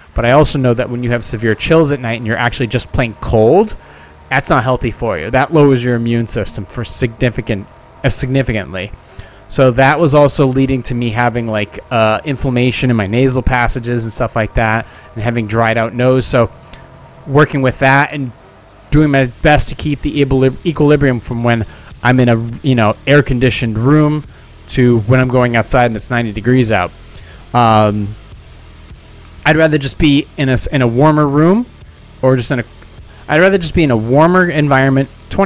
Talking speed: 190 wpm